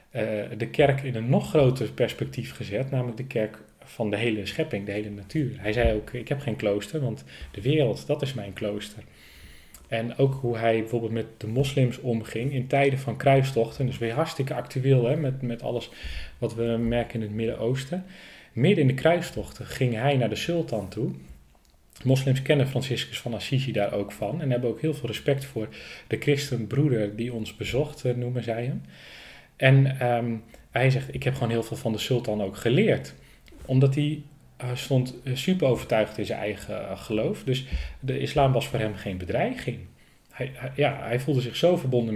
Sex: male